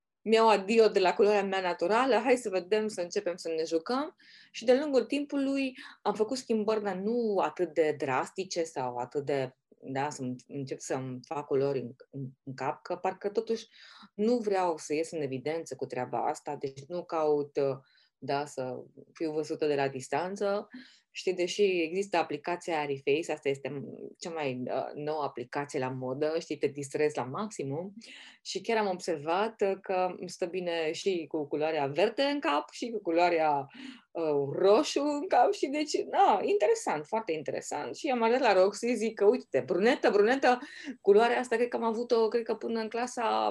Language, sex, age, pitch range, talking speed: Romanian, female, 20-39, 150-225 Hz, 175 wpm